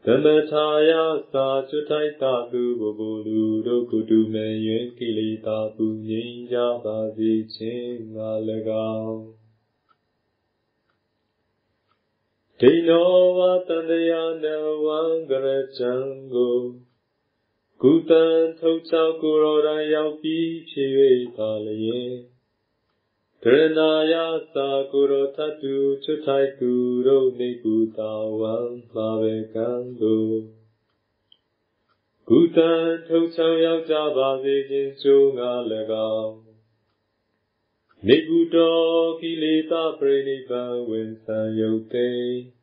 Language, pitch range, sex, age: Vietnamese, 110-155 Hz, male, 30-49